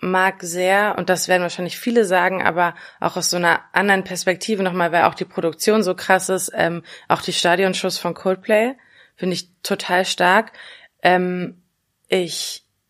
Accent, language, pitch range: German, German, 170-195 Hz